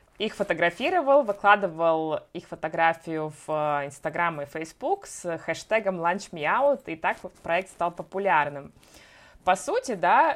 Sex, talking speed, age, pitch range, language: female, 125 wpm, 20-39, 175-215 Hz, Russian